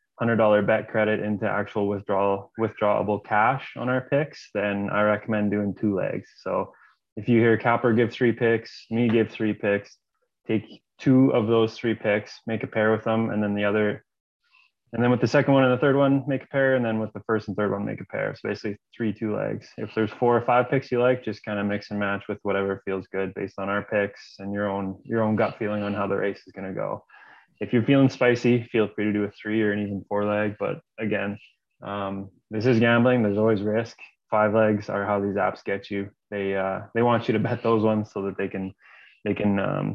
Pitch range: 100-115 Hz